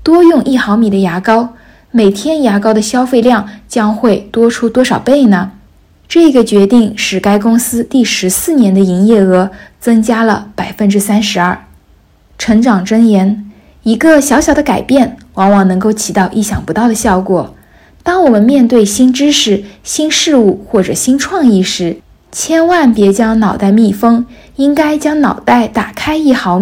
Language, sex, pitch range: Chinese, female, 200-245 Hz